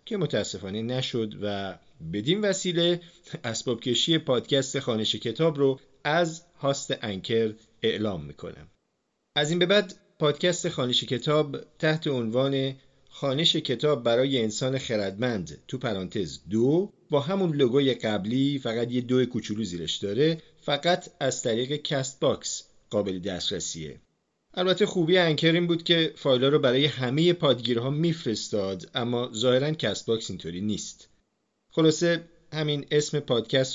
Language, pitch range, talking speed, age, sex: Persian, 110-155 Hz, 130 wpm, 40-59, male